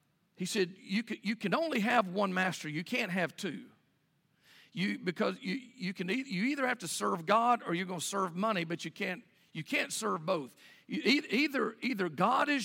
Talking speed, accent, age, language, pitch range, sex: 200 wpm, American, 50-69, English, 190-250 Hz, male